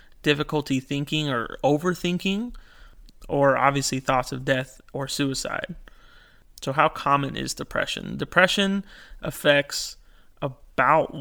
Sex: male